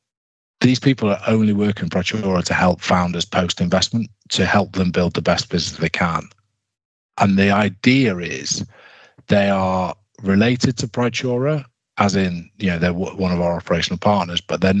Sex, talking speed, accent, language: male, 170 wpm, British, English